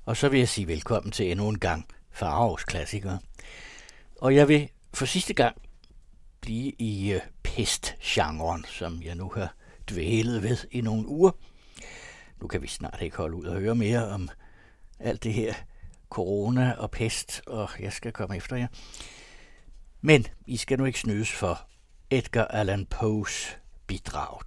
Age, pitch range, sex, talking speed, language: 60-79, 95-120 Hz, male, 155 wpm, Danish